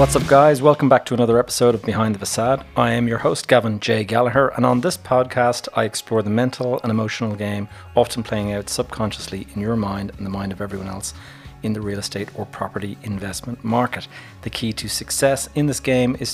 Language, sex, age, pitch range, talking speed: English, male, 30-49, 105-125 Hz, 215 wpm